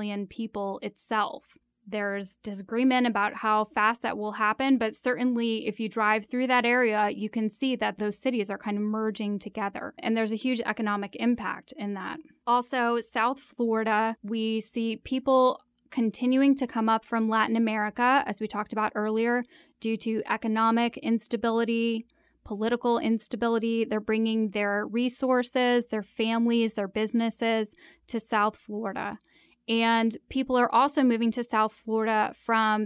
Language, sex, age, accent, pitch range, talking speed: English, female, 10-29, American, 215-240 Hz, 150 wpm